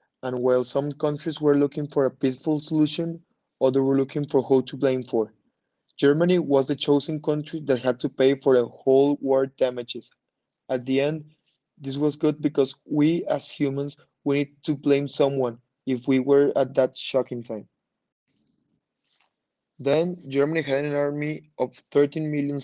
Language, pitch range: English, 130-150 Hz